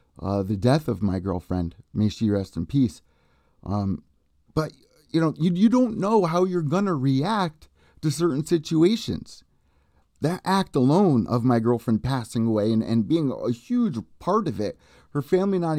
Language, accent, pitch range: English, American, 95-135 Hz